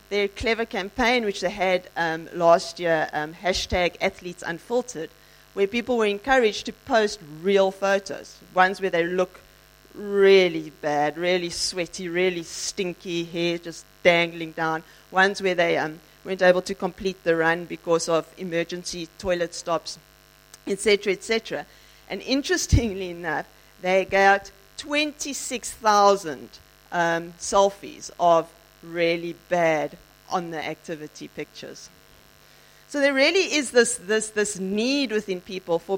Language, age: English, 40-59